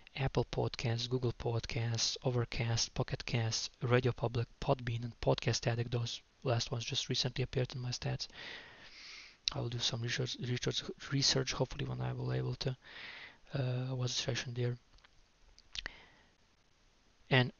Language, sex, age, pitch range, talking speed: English, male, 20-39, 115-130 Hz, 135 wpm